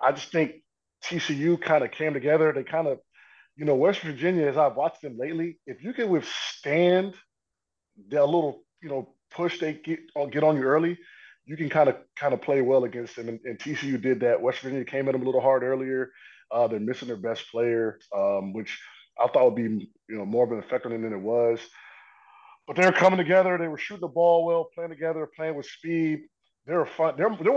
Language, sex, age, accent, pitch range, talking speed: English, male, 20-39, American, 120-160 Hz, 220 wpm